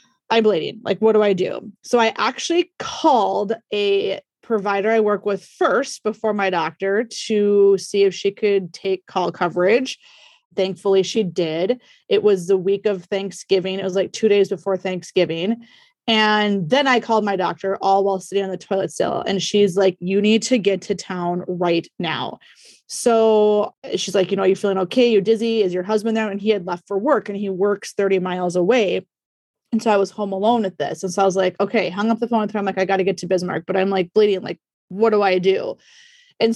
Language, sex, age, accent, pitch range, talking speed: English, female, 20-39, American, 195-225 Hz, 220 wpm